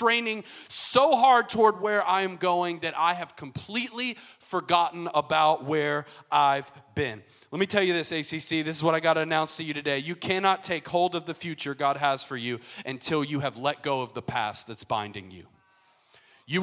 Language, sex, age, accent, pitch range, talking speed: English, male, 30-49, American, 140-195 Hz, 200 wpm